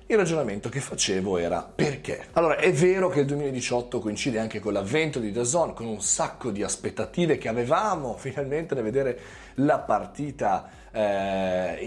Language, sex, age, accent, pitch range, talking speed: Italian, male, 30-49, native, 105-140 Hz, 160 wpm